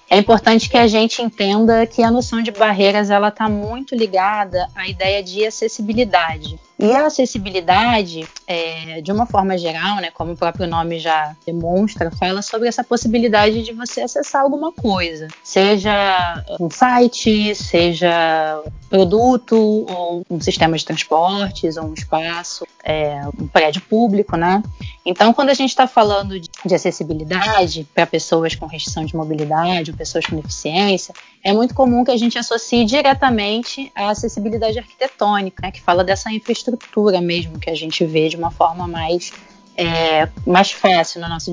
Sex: female